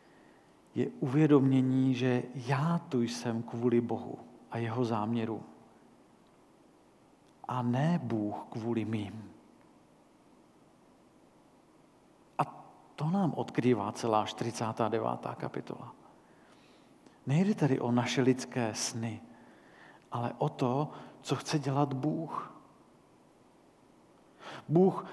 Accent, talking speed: native, 90 wpm